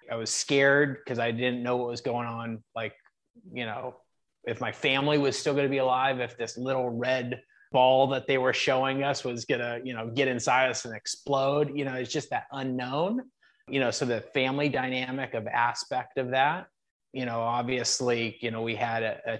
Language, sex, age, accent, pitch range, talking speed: English, male, 30-49, American, 115-135 Hz, 210 wpm